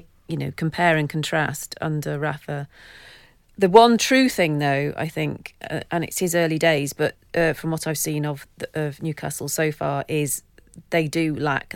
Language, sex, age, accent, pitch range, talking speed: English, female, 40-59, British, 140-160 Hz, 185 wpm